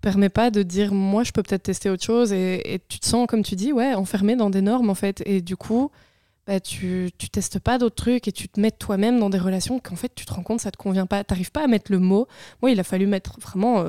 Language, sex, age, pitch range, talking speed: French, female, 20-39, 190-220 Hz, 285 wpm